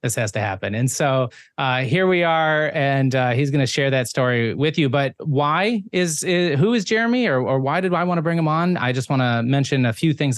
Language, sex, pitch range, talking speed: English, male, 115-150 Hz, 255 wpm